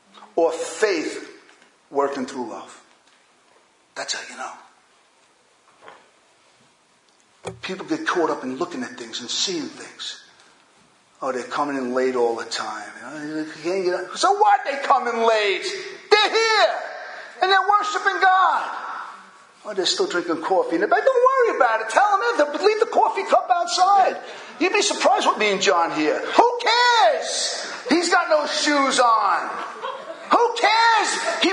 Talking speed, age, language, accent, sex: 150 wpm, 40-59, English, American, male